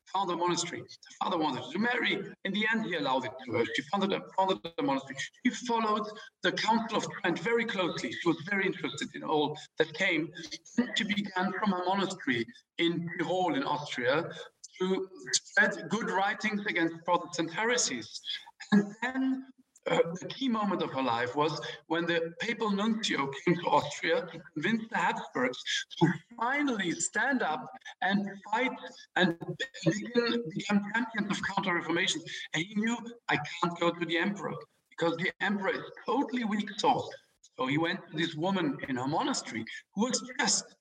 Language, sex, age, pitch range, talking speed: English, male, 50-69, 170-230 Hz, 170 wpm